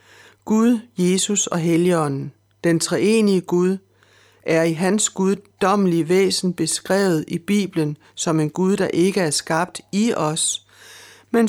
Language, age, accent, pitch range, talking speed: Danish, 60-79, native, 160-195 Hz, 130 wpm